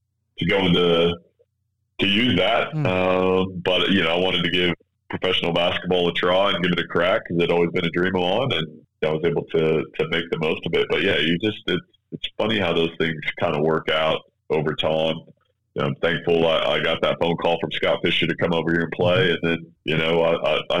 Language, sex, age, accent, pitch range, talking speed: English, male, 30-49, American, 80-90 Hz, 240 wpm